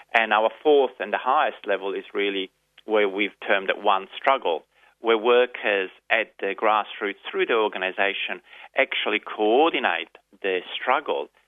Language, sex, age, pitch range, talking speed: English, male, 30-49, 95-120 Hz, 140 wpm